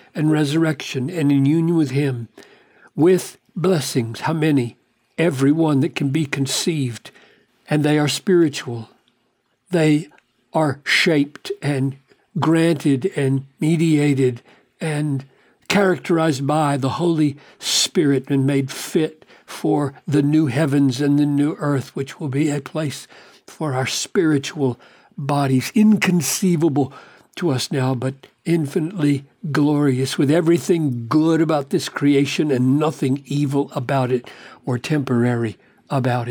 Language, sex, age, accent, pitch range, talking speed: English, male, 60-79, American, 135-155 Hz, 125 wpm